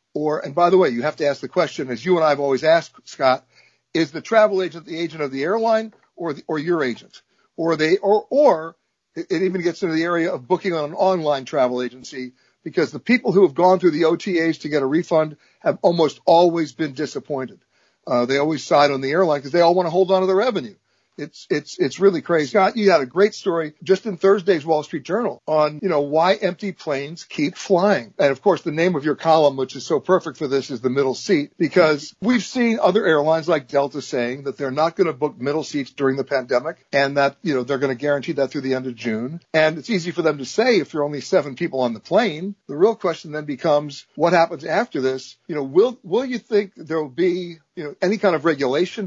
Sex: male